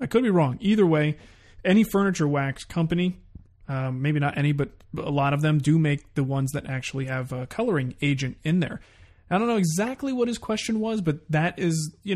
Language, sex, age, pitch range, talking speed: English, male, 30-49, 135-160 Hz, 210 wpm